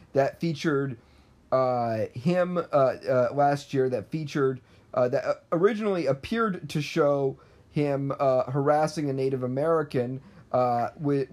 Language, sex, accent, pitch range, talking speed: English, male, American, 125-155 Hz, 120 wpm